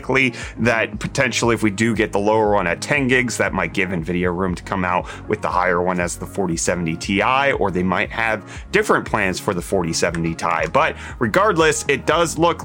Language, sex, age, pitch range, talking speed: English, male, 30-49, 105-150 Hz, 205 wpm